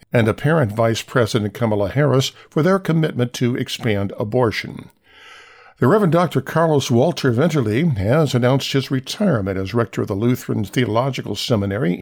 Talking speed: 145 wpm